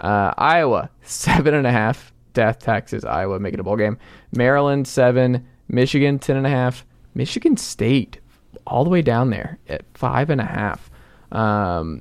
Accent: American